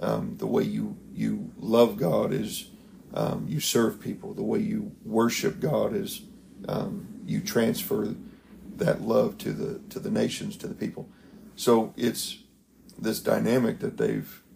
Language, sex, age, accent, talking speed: English, male, 40-59, American, 155 wpm